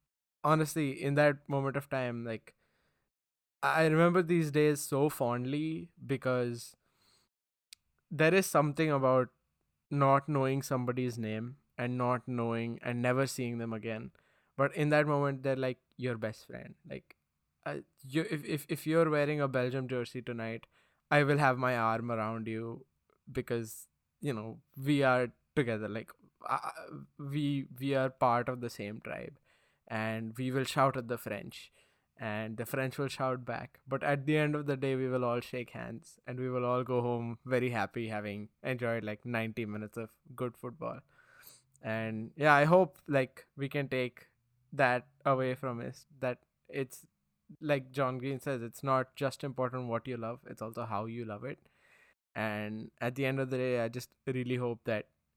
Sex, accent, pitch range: male, Indian, 115-140 Hz